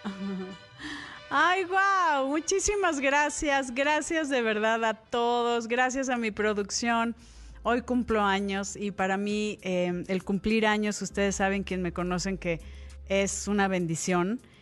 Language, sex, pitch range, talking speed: Spanish, female, 180-230 Hz, 130 wpm